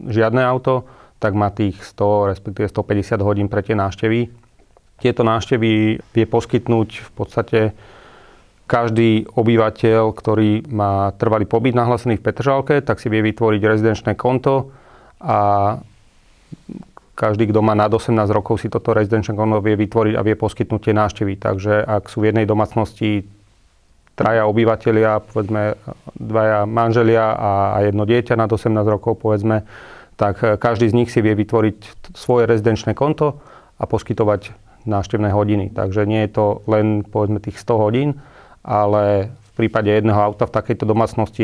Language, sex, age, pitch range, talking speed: Slovak, male, 30-49, 105-115 Hz, 145 wpm